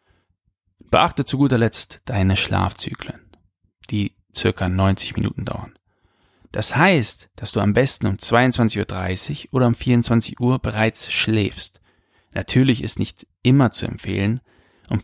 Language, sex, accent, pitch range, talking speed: German, male, German, 95-125 Hz, 130 wpm